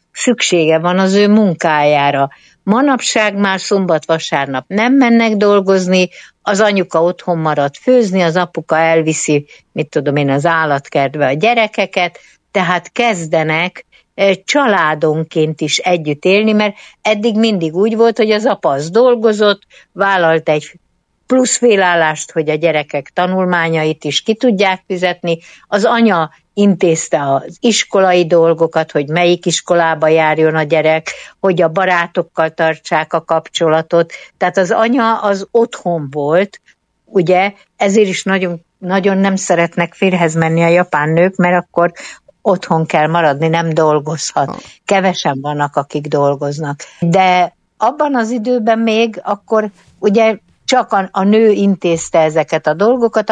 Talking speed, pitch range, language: 130 wpm, 160-205 Hz, Hungarian